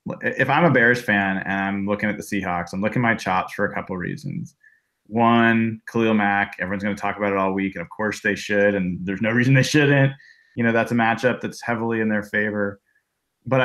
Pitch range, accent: 100-125 Hz, American